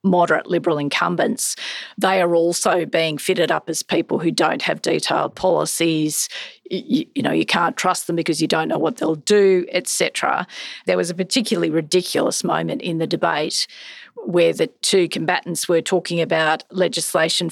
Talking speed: 160 wpm